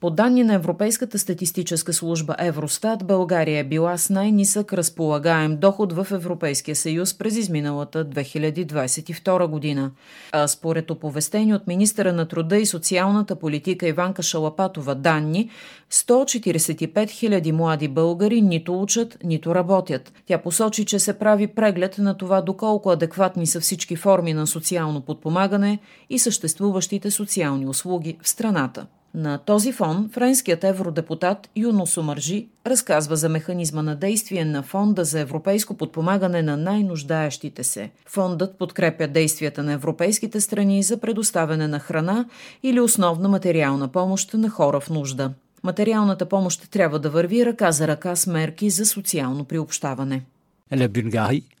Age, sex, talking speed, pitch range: 40-59, female, 135 wpm, 160-200 Hz